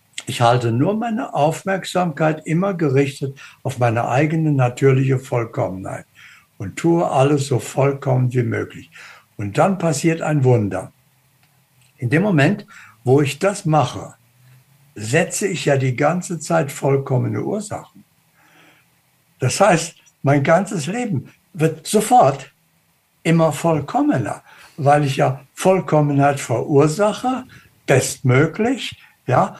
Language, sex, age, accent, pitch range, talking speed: German, male, 60-79, German, 130-165 Hz, 110 wpm